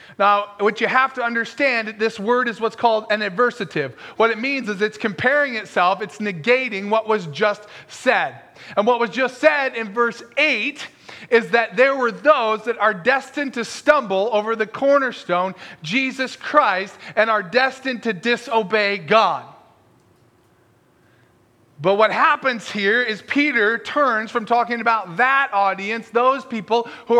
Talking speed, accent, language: 155 wpm, American, English